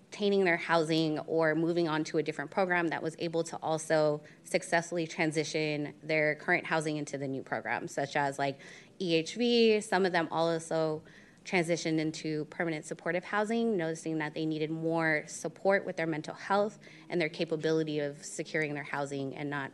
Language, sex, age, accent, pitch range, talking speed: English, female, 20-39, American, 155-180 Hz, 165 wpm